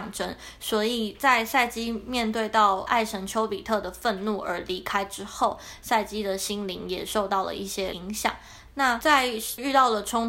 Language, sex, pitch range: Chinese, female, 195-220 Hz